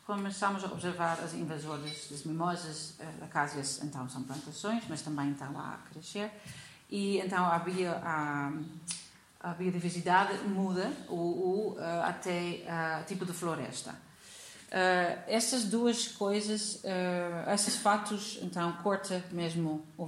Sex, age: female, 40-59